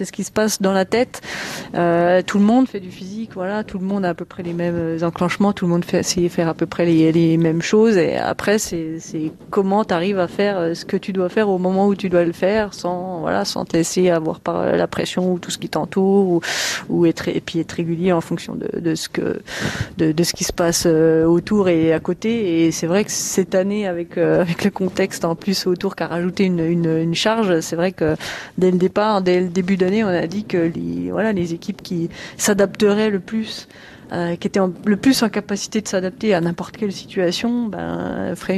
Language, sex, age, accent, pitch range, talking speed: French, female, 30-49, French, 170-200 Hz, 240 wpm